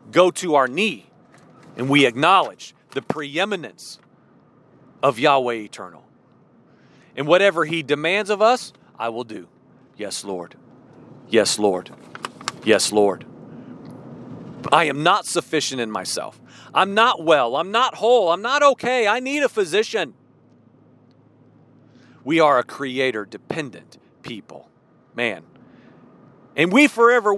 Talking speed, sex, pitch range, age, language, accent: 120 wpm, male, 150-245 Hz, 40-59, English, American